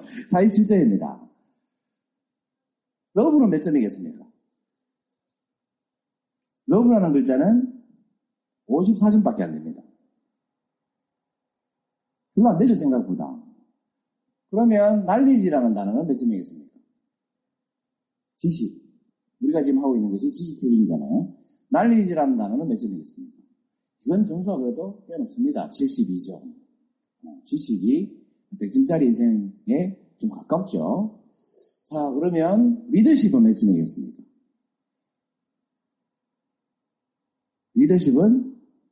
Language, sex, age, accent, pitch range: Korean, male, 40-59, native, 220-260 Hz